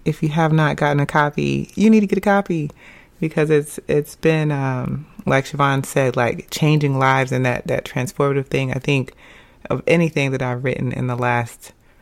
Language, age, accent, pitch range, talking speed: English, 30-49, American, 125-150 Hz, 195 wpm